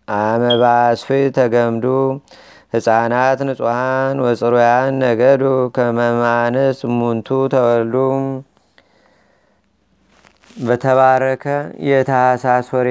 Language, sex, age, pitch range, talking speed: Amharic, male, 30-49, 125-135 Hz, 50 wpm